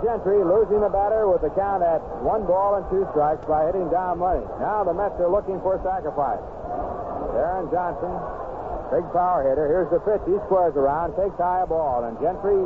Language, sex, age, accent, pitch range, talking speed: English, male, 60-79, American, 160-195 Hz, 200 wpm